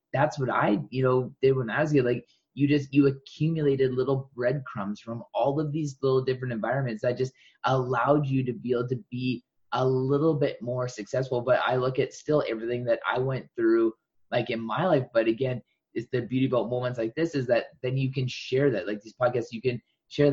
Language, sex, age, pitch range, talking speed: English, male, 20-39, 120-140 Hz, 215 wpm